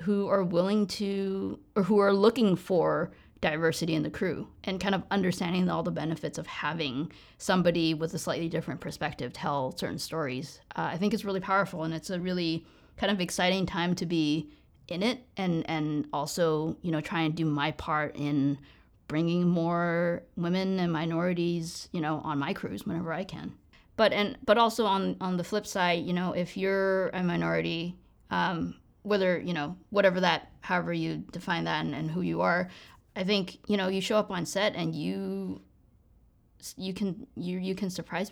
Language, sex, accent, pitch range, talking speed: English, female, American, 160-195 Hz, 190 wpm